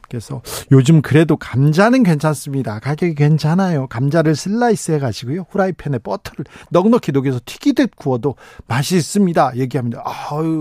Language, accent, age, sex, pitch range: Korean, native, 40-59, male, 135-185 Hz